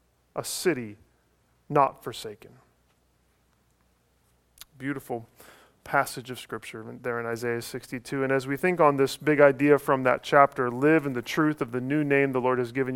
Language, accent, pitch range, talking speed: English, American, 130-170 Hz, 160 wpm